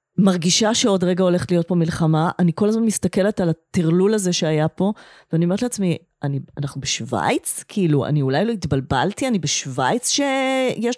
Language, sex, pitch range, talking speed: Hebrew, female, 170-220 Hz, 165 wpm